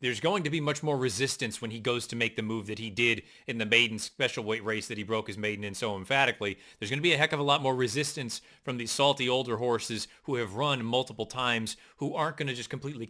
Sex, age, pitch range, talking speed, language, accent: male, 30-49, 115-155 Hz, 265 wpm, English, American